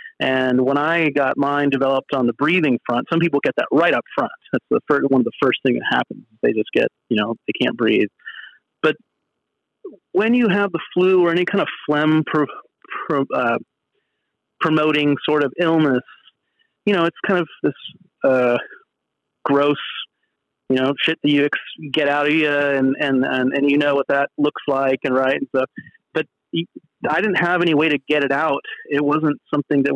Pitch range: 135-160 Hz